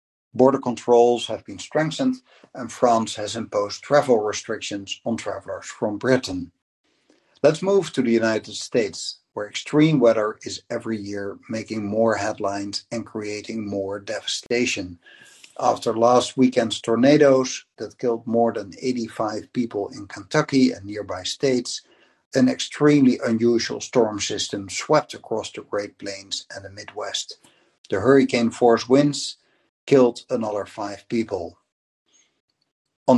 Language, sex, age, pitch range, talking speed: English, male, 60-79, 110-130 Hz, 130 wpm